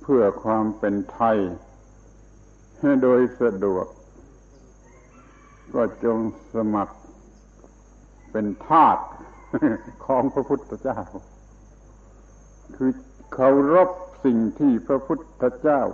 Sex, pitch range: male, 110-130 Hz